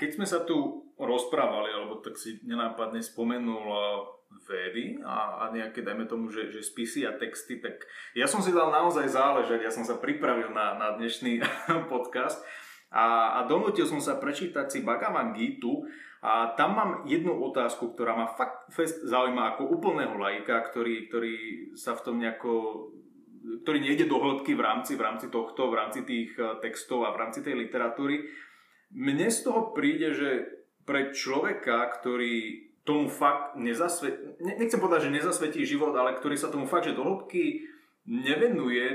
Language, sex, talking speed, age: Slovak, male, 155 wpm, 20-39